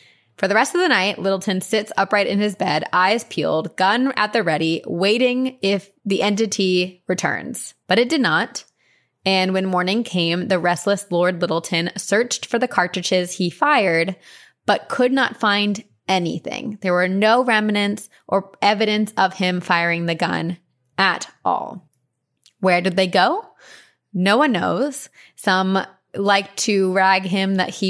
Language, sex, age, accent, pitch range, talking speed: English, female, 20-39, American, 175-215 Hz, 155 wpm